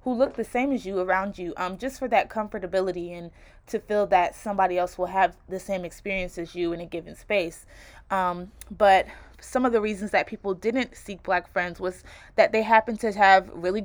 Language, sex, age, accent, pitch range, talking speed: English, female, 20-39, American, 180-215 Hz, 210 wpm